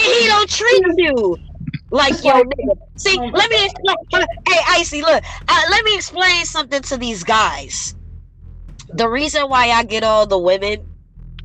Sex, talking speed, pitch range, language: female, 155 wpm, 175-255 Hz, English